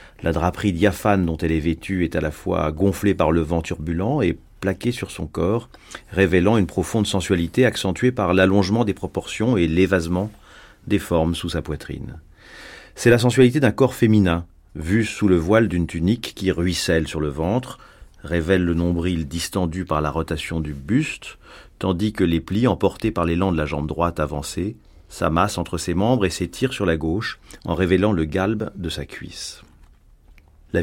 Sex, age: male, 40-59